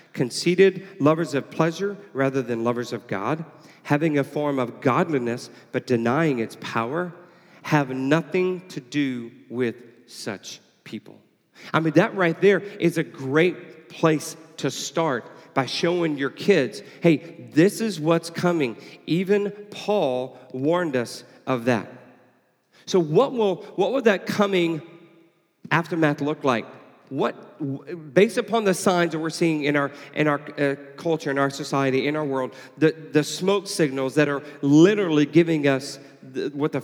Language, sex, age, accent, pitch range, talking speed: English, male, 40-59, American, 130-170 Hz, 155 wpm